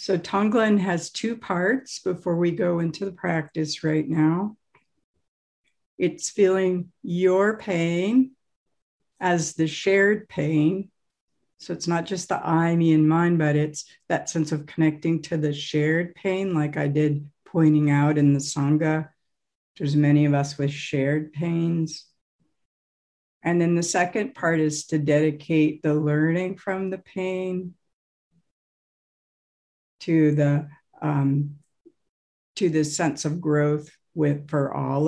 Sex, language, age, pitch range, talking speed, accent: female, English, 60-79, 150-185 Hz, 135 wpm, American